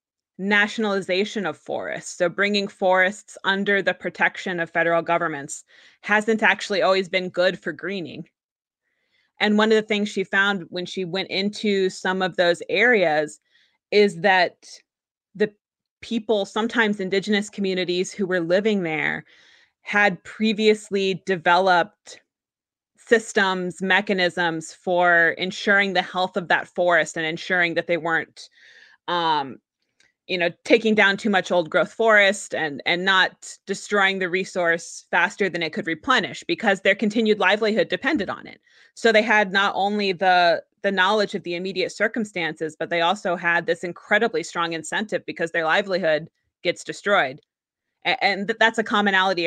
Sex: female